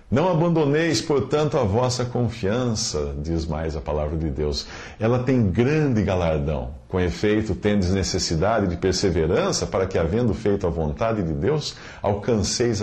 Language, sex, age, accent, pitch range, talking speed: English, male, 50-69, Brazilian, 85-115 Hz, 145 wpm